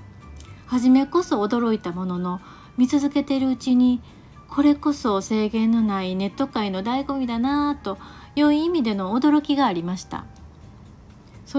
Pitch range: 185-265 Hz